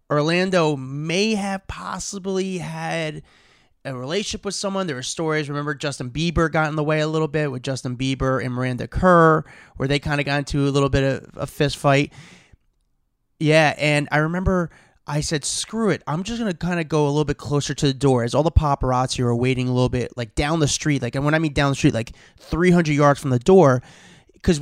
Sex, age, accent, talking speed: male, 20-39, American, 220 wpm